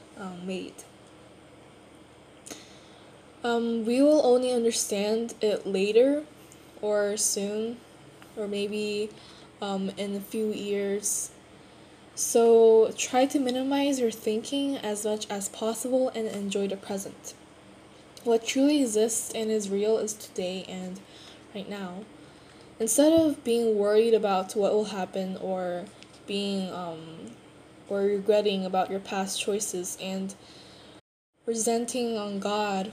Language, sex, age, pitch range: Korean, female, 10-29, 200-230 Hz